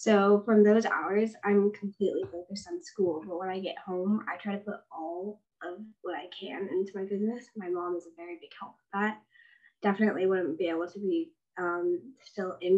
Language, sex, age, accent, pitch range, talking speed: English, female, 10-29, American, 190-215 Hz, 205 wpm